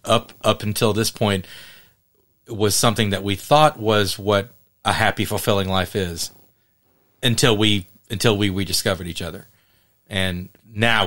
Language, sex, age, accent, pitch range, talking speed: English, male, 40-59, American, 95-115 Hz, 145 wpm